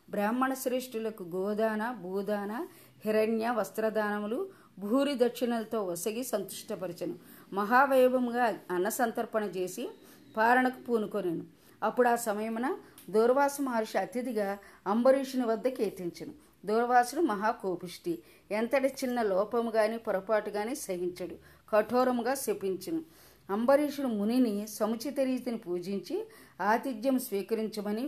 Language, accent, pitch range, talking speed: Telugu, native, 200-255 Hz, 90 wpm